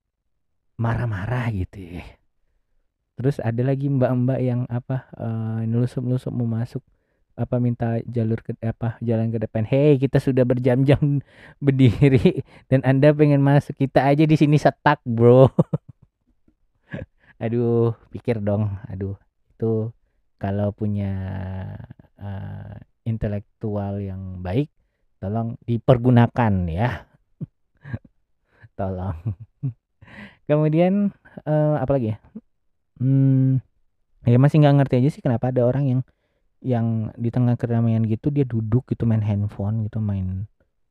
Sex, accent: male, native